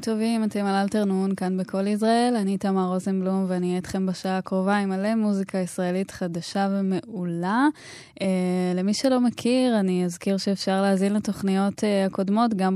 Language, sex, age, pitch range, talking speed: Hebrew, female, 10-29, 180-205 Hz, 155 wpm